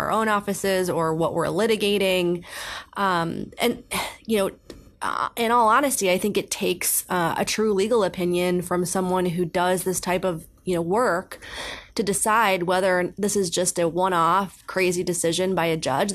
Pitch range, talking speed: 170-195 Hz, 175 wpm